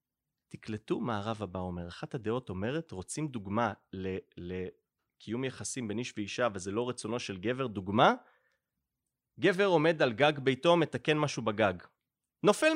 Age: 30-49